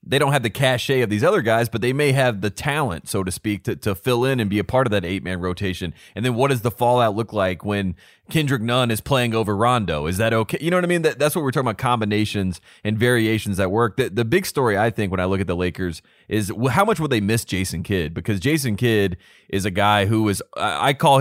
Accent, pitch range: American, 100-130 Hz